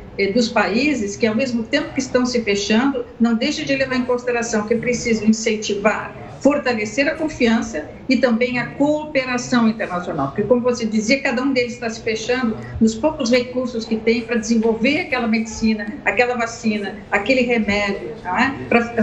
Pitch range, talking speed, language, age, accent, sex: 215-255 Hz, 165 wpm, Portuguese, 50-69, Brazilian, female